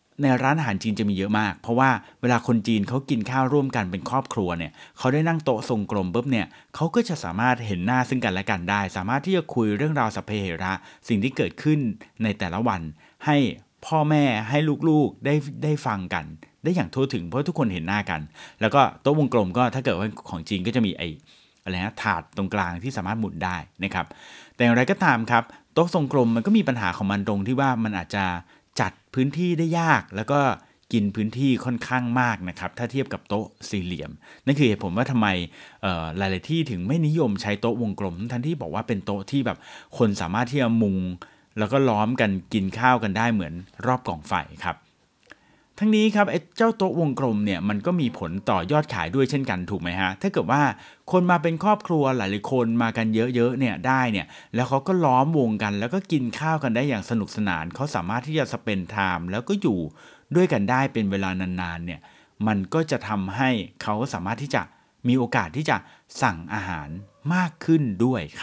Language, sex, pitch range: Thai, male, 100-140 Hz